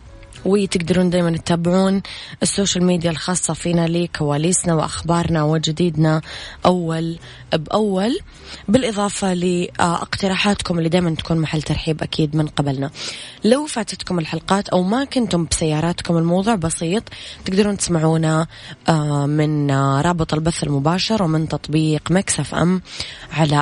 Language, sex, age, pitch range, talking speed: Arabic, female, 20-39, 150-180 Hz, 110 wpm